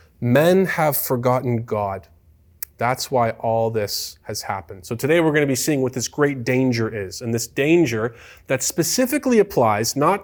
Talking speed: 170 wpm